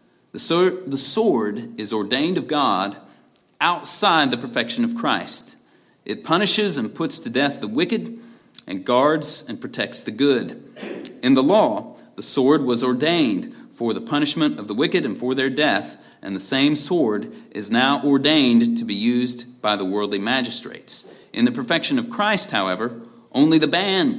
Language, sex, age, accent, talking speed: English, male, 30-49, American, 160 wpm